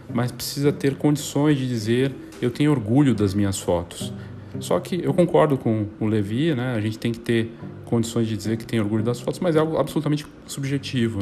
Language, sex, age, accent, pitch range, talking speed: Portuguese, male, 40-59, Brazilian, 110-135 Hz, 205 wpm